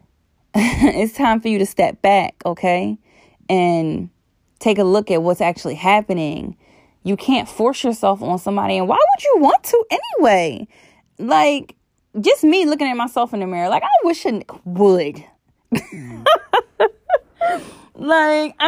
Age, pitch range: 20-39, 170-275 Hz